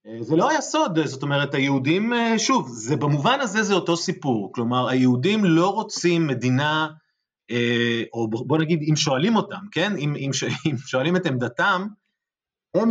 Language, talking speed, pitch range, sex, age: Hebrew, 145 wpm, 135-185 Hz, male, 30-49